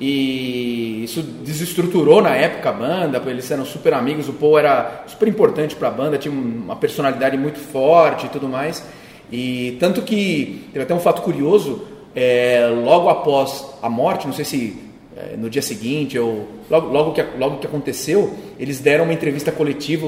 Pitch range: 130-175 Hz